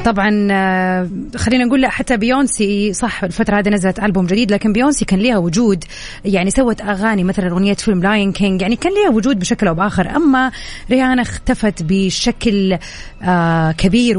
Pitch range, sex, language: 170-225 Hz, female, Arabic